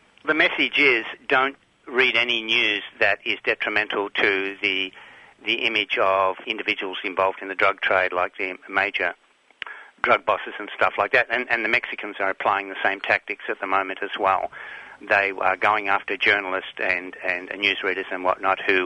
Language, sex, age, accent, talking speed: English, male, 60-79, Australian, 175 wpm